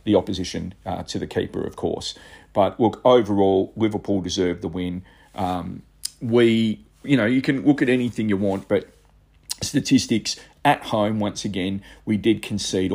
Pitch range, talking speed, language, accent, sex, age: 90-105 Hz, 160 wpm, English, Australian, male, 40-59